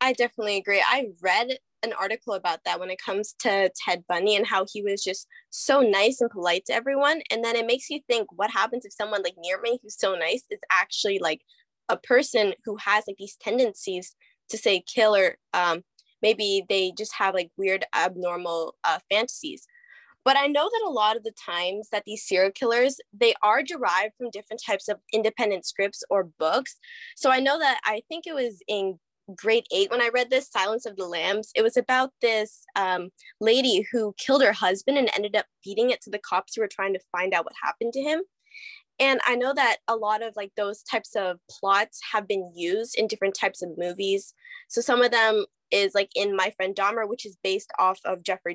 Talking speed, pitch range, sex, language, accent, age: 215 wpm, 195-250 Hz, female, English, American, 10-29